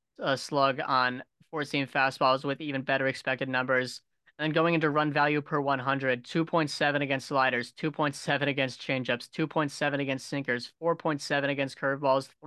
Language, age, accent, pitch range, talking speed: English, 20-39, American, 130-150 Hz, 145 wpm